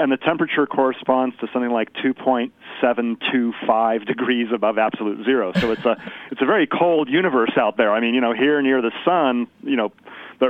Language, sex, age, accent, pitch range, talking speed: English, male, 40-59, American, 115-135 Hz, 190 wpm